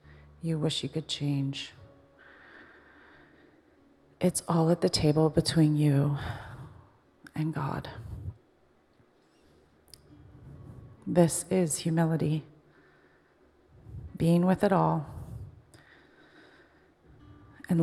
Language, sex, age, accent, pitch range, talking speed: English, female, 30-49, American, 120-170 Hz, 75 wpm